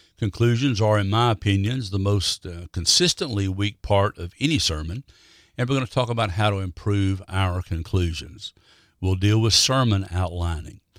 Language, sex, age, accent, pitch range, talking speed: English, male, 60-79, American, 90-115 Hz, 165 wpm